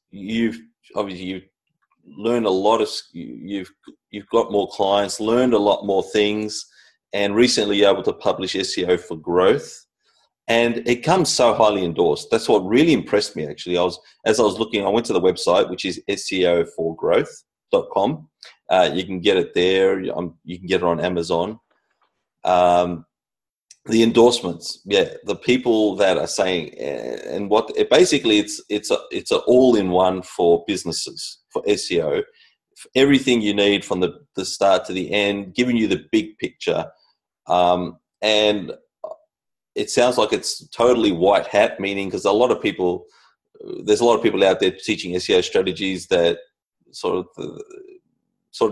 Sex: male